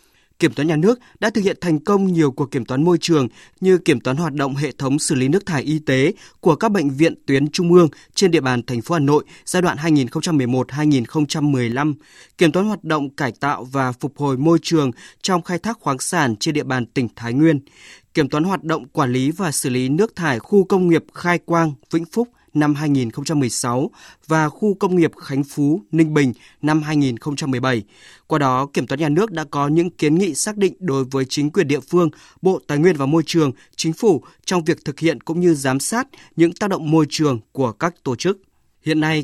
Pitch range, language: 140-175 Hz, Vietnamese